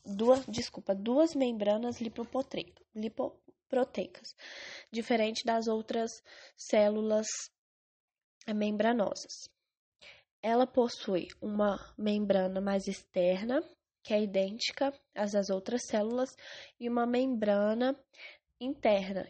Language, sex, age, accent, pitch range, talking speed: English, female, 10-29, Brazilian, 210-250 Hz, 80 wpm